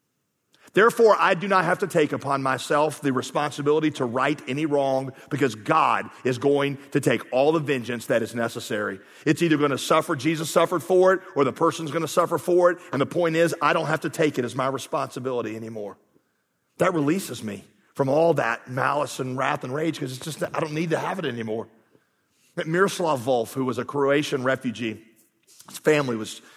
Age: 40-59